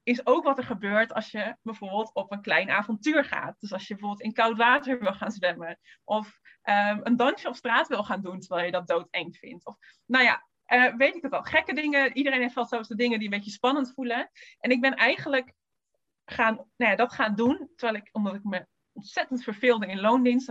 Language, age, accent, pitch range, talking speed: Dutch, 20-39, Dutch, 205-265 Hz, 225 wpm